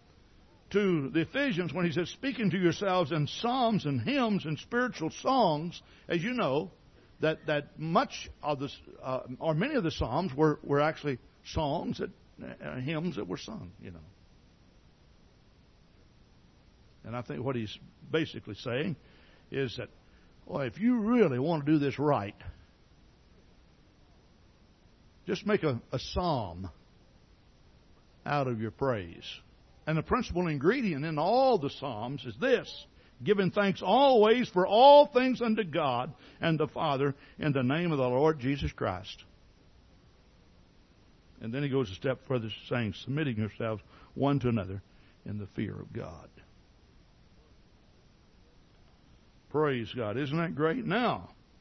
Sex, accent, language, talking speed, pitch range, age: male, American, English, 140 wpm, 115-180 Hz, 60-79